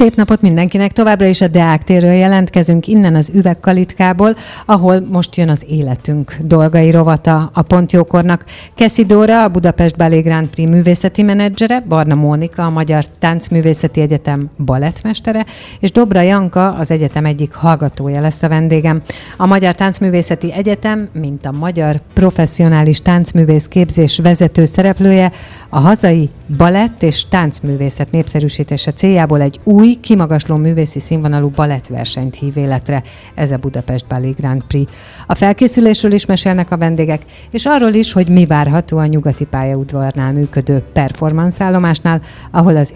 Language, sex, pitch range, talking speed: Hungarian, female, 145-185 Hz, 140 wpm